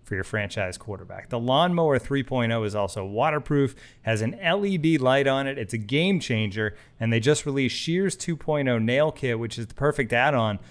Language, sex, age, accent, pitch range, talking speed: English, male, 30-49, American, 110-140 Hz, 185 wpm